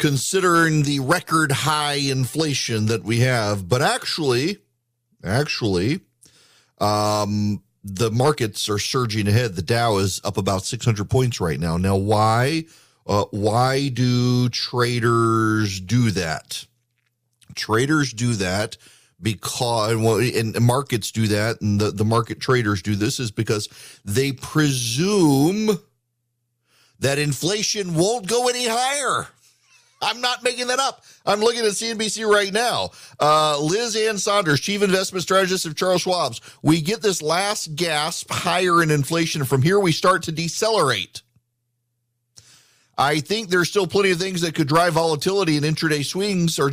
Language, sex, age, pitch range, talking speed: English, male, 40-59, 120-180 Hz, 140 wpm